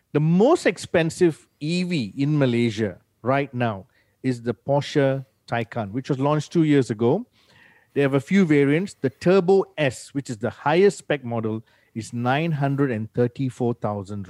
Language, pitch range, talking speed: English, 120-160 Hz, 145 wpm